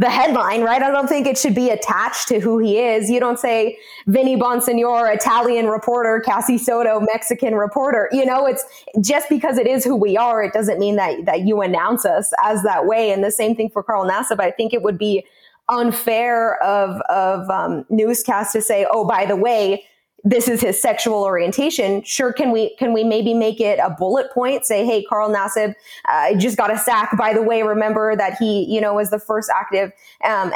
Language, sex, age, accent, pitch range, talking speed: English, female, 20-39, American, 205-240 Hz, 210 wpm